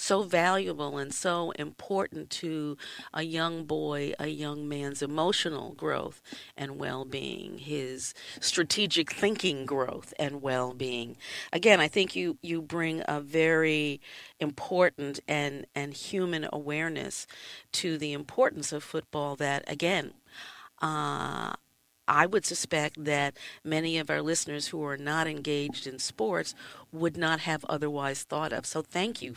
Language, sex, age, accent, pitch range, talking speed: English, female, 50-69, American, 145-180 Hz, 140 wpm